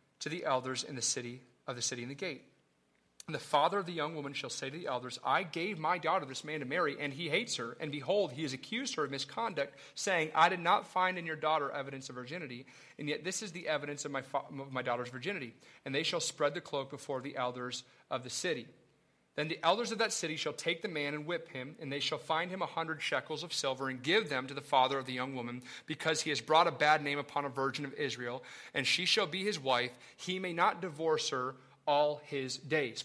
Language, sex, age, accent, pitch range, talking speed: English, male, 30-49, American, 140-185 Hz, 250 wpm